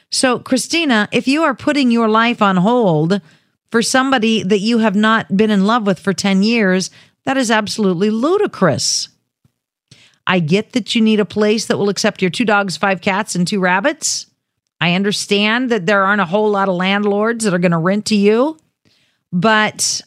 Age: 50-69